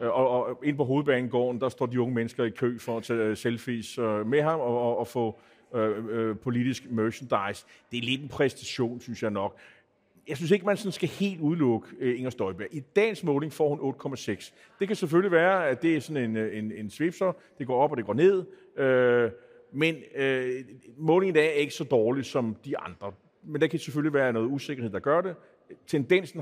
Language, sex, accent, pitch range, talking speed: Danish, male, native, 125-170 Hz, 205 wpm